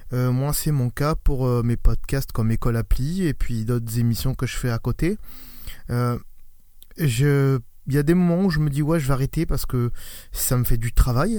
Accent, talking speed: French, 210 wpm